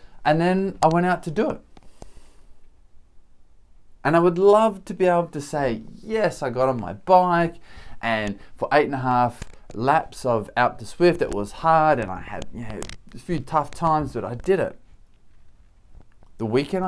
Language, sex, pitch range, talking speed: English, male, 105-145 Hz, 180 wpm